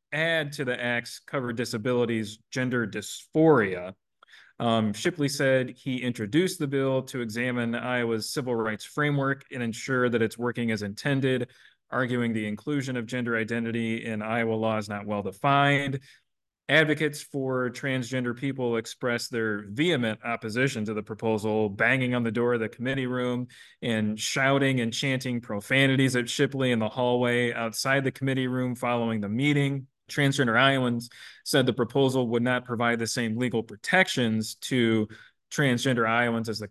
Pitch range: 115-135 Hz